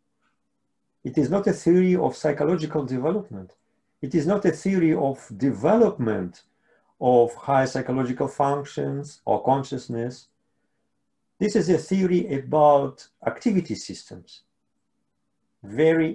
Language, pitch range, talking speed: English, 110-150 Hz, 110 wpm